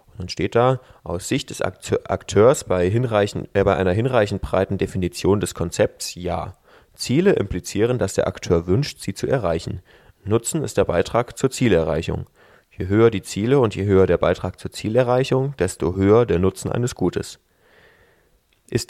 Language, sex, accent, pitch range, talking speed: German, male, German, 95-115 Hz, 160 wpm